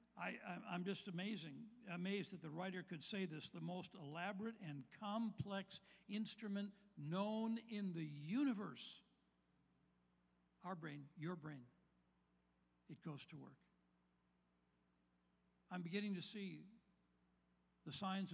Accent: American